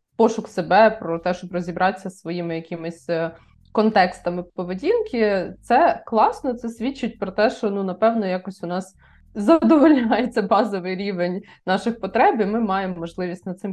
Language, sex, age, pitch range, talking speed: Ukrainian, female, 20-39, 180-225 Hz, 150 wpm